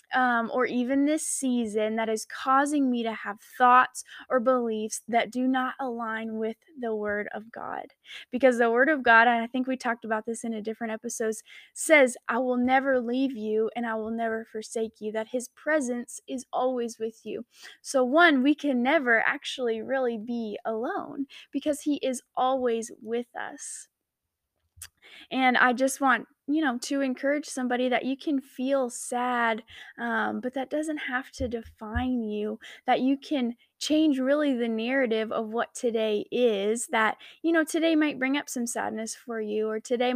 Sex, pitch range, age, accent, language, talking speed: female, 225-260 Hz, 10-29, American, English, 180 wpm